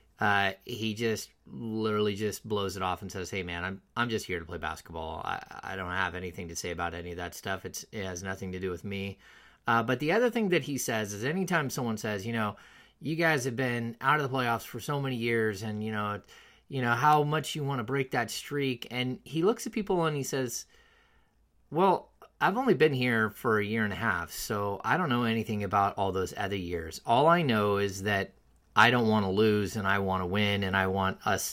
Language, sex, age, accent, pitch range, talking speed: English, male, 30-49, American, 100-130 Hz, 240 wpm